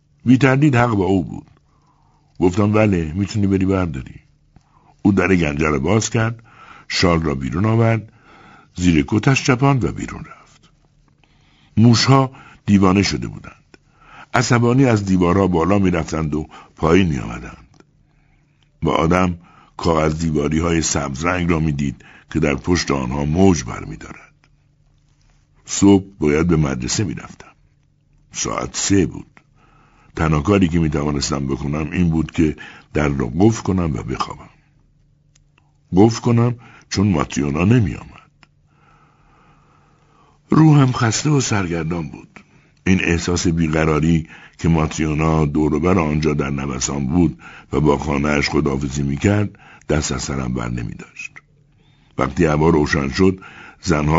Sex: male